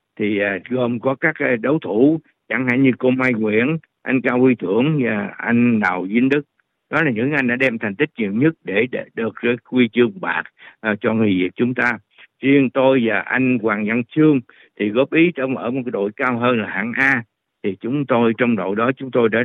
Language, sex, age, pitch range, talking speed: Vietnamese, male, 60-79, 115-140 Hz, 215 wpm